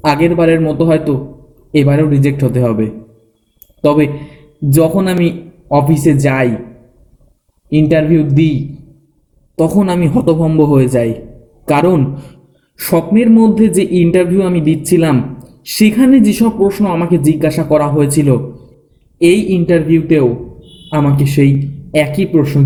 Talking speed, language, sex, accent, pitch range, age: 105 wpm, Bengali, male, native, 125-170 Hz, 20-39